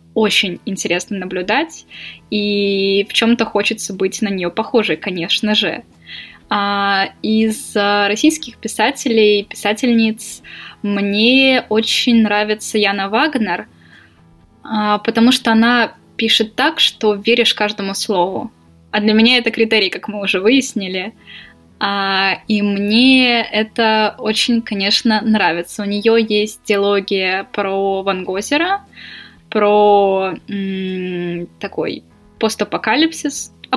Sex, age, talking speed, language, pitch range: female, 10-29, 100 wpm, Russian, 200-230 Hz